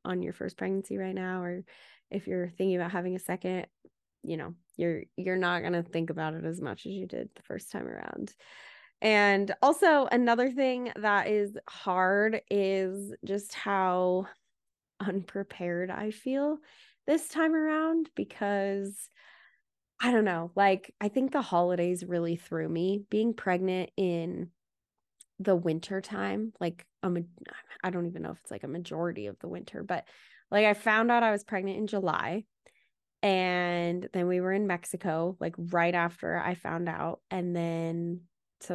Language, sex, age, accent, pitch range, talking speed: English, female, 20-39, American, 175-205 Hz, 165 wpm